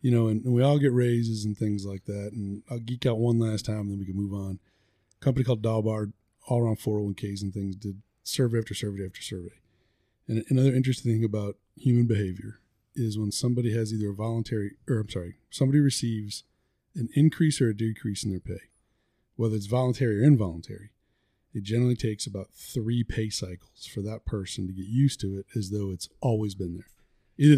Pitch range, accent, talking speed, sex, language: 105-125 Hz, American, 200 wpm, male, English